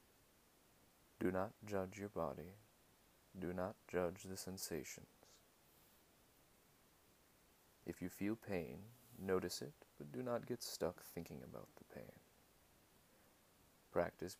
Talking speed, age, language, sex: 110 wpm, 40-59, English, male